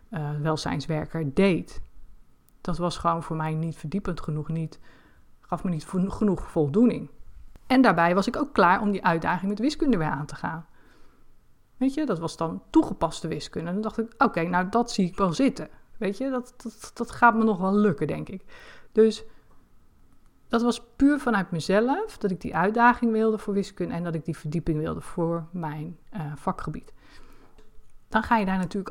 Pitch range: 165-215 Hz